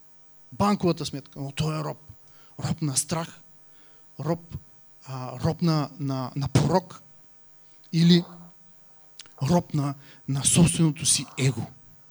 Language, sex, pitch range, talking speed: English, male, 140-175 Hz, 105 wpm